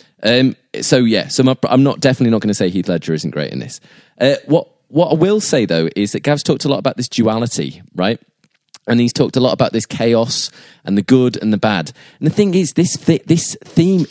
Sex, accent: male, British